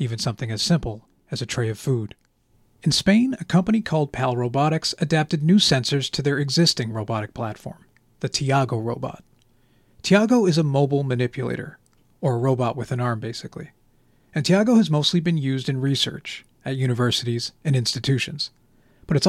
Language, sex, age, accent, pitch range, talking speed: English, male, 40-59, American, 125-155 Hz, 165 wpm